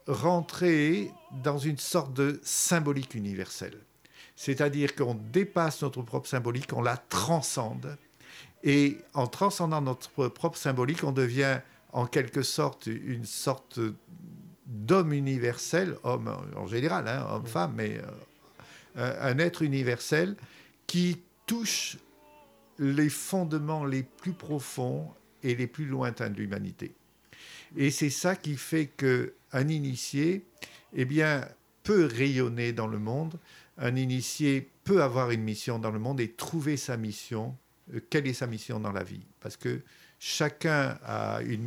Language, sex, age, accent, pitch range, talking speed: French, male, 50-69, French, 120-155 Hz, 135 wpm